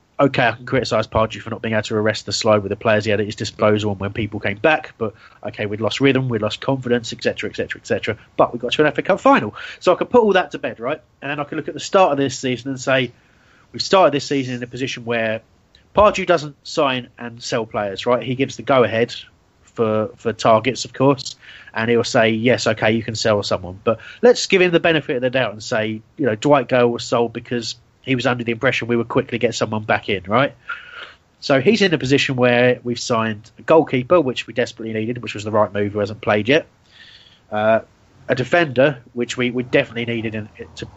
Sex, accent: male, British